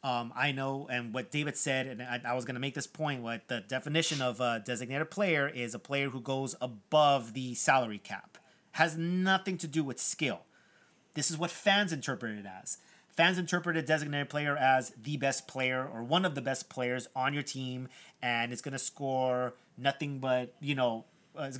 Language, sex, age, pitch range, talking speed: English, male, 30-49, 125-150 Hz, 205 wpm